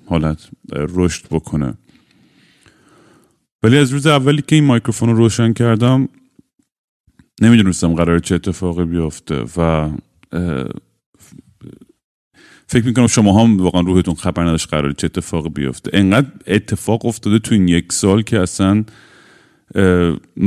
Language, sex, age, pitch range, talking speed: Persian, male, 30-49, 85-110 Hz, 115 wpm